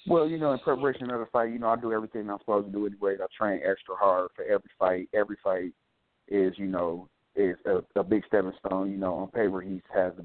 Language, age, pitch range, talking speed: English, 30-49, 90-100 Hz, 250 wpm